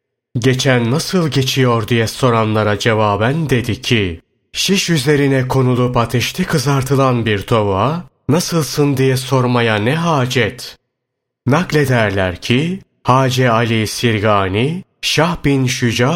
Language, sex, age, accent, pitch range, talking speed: Turkish, male, 30-49, native, 110-140 Hz, 105 wpm